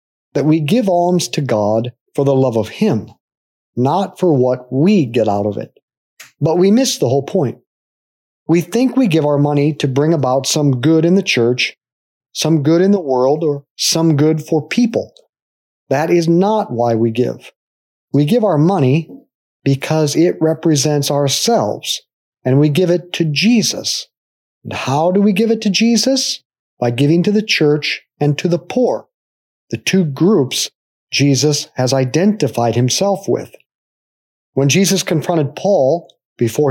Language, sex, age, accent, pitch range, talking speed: English, male, 40-59, American, 135-175 Hz, 160 wpm